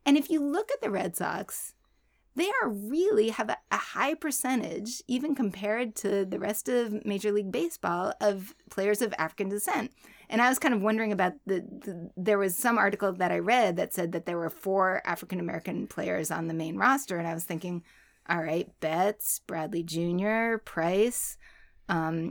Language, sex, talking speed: English, female, 190 wpm